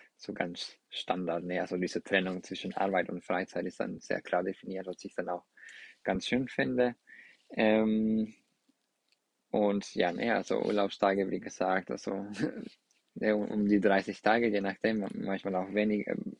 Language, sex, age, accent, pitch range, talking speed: German, male, 20-39, German, 95-110 Hz, 155 wpm